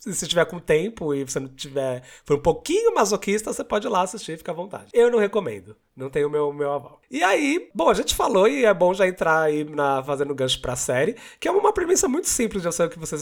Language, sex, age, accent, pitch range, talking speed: Portuguese, male, 20-39, Brazilian, 145-205 Hz, 255 wpm